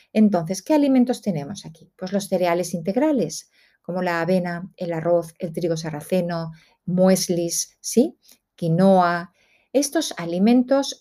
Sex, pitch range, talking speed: female, 180-230 Hz, 115 wpm